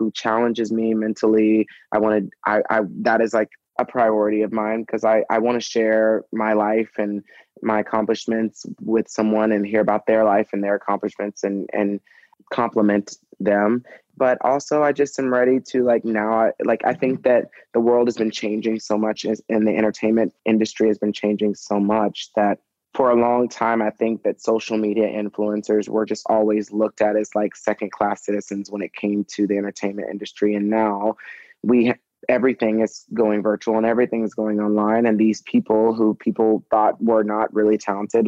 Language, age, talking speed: English, 20-39, 190 wpm